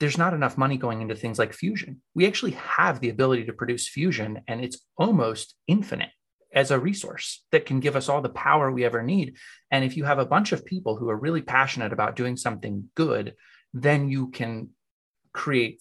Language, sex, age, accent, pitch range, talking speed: English, male, 30-49, American, 110-145 Hz, 205 wpm